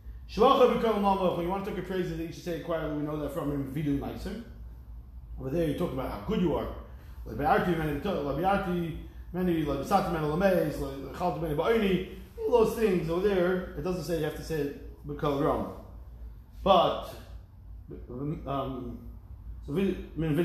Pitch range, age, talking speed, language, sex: 145-195 Hz, 30-49, 105 wpm, English, male